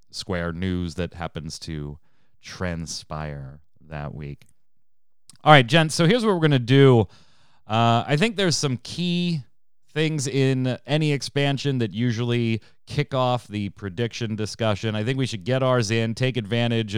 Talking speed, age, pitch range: 150 wpm, 30-49, 95-130 Hz